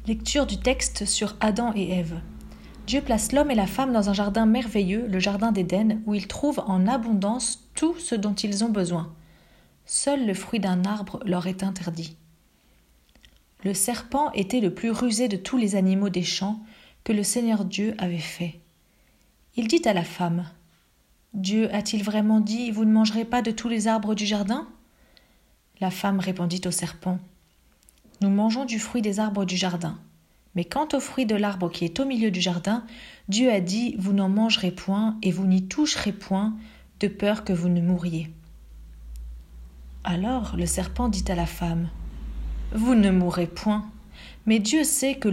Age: 40-59